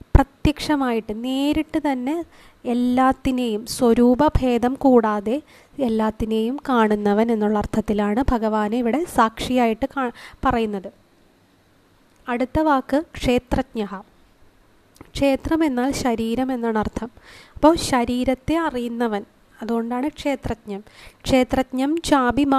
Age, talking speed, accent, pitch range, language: 20-39, 80 wpm, native, 225-275 Hz, Malayalam